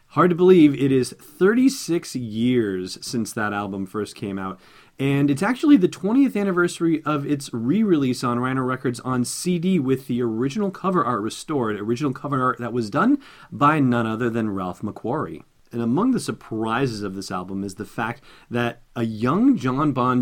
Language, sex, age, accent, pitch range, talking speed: English, male, 30-49, American, 105-140 Hz, 180 wpm